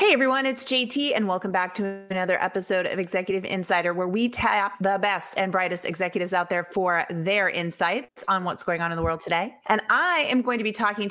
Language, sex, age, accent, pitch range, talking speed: English, female, 30-49, American, 185-240 Hz, 220 wpm